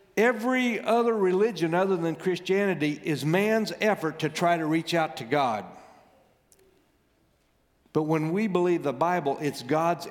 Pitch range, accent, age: 170-225 Hz, American, 50-69